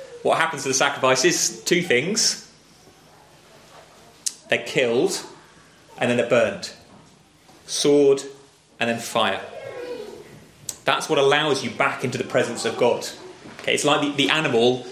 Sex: male